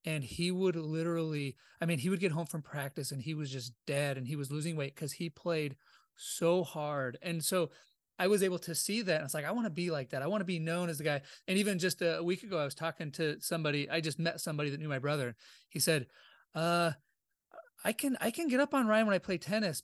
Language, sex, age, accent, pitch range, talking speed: English, male, 30-49, American, 150-190 Hz, 260 wpm